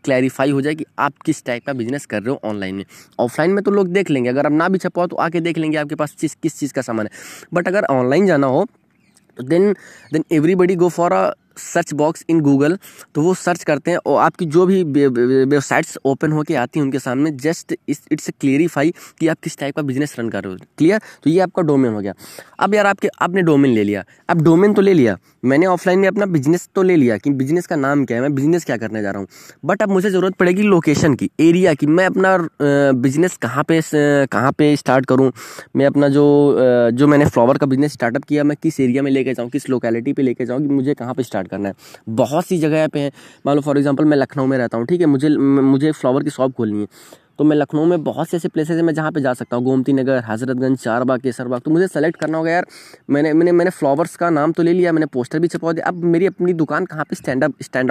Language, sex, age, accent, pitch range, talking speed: Hindi, male, 20-39, native, 130-170 Hz, 250 wpm